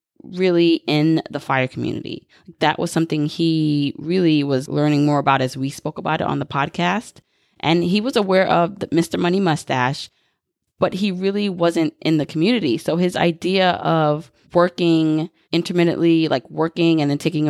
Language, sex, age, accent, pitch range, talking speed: English, female, 20-39, American, 145-170 Hz, 170 wpm